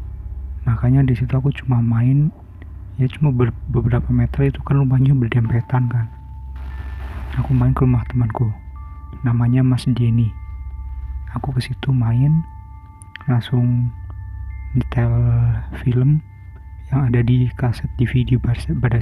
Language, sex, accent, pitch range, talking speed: Indonesian, male, native, 90-125 Hz, 115 wpm